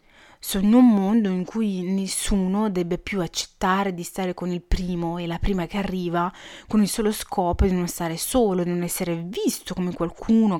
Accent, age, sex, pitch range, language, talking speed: native, 30-49, female, 175-220 Hz, Italian, 195 wpm